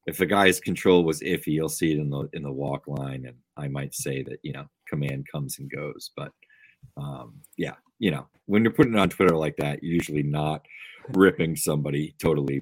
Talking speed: 215 wpm